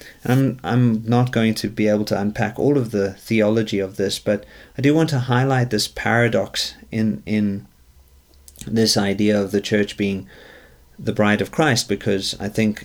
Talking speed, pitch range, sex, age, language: 175 wpm, 100-120 Hz, male, 40-59, English